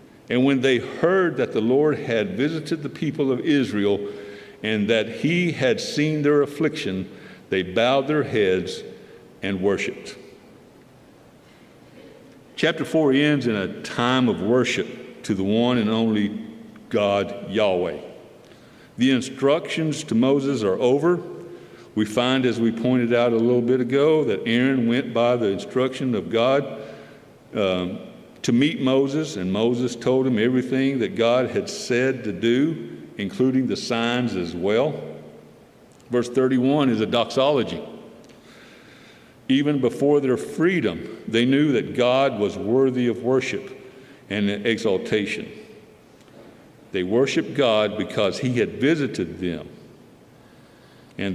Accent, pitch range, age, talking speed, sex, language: American, 115-140 Hz, 60-79, 130 wpm, male, English